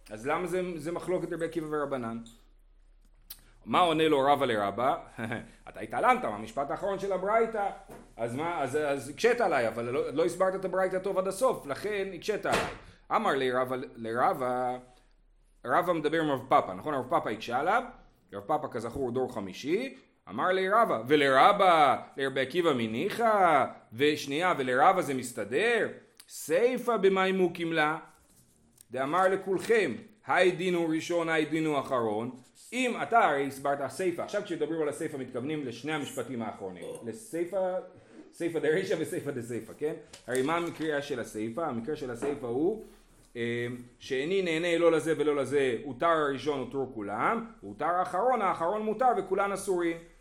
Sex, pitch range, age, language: male, 140-195 Hz, 40-59, Hebrew